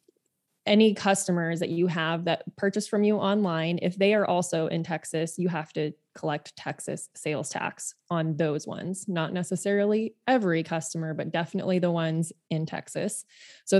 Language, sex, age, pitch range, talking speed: English, female, 20-39, 160-195 Hz, 160 wpm